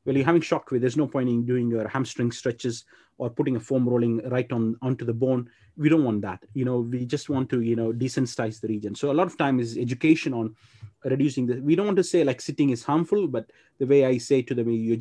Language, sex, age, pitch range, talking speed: English, male, 30-49, 115-140 Hz, 255 wpm